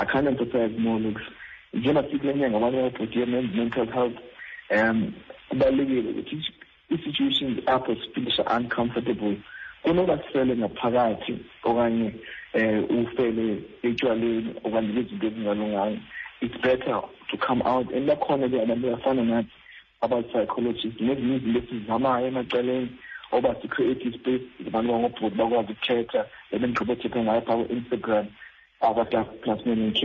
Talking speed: 105 wpm